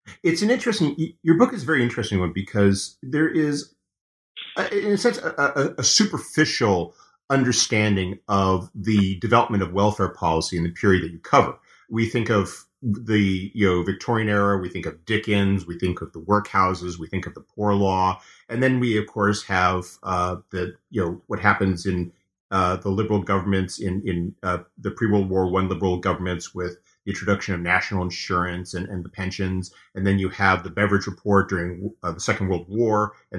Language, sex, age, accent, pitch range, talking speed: English, male, 30-49, American, 95-125 Hz, 190 wpm